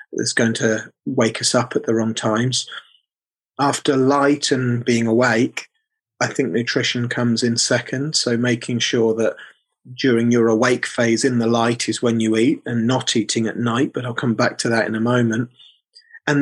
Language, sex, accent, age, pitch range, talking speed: English, male, British, 30-49, 115-135 Hz, 185 wpm